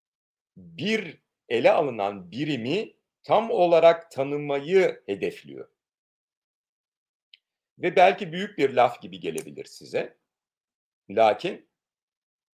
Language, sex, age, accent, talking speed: Turkish, male, 50-69, native, 80 wpm